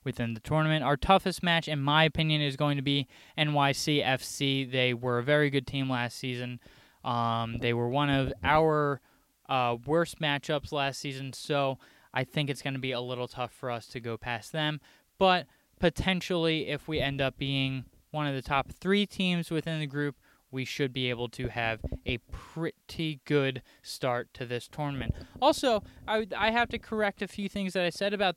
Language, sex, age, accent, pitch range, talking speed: English, male, 20-39, American, 125-160 Hz, 195 wpm